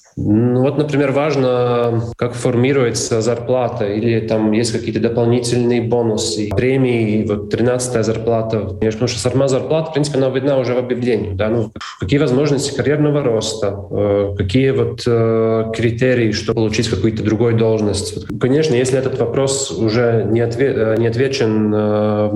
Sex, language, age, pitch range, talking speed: male, Russian, 20-39, 110-125 Hz, 135 wpm